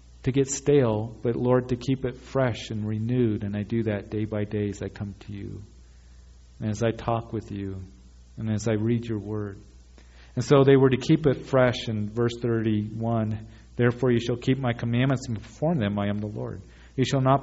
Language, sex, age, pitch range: English, male, 40-59, 105-120 Hz